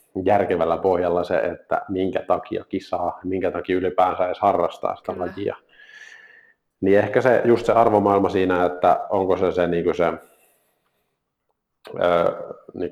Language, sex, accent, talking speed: Finnish, male, native, 135 wpm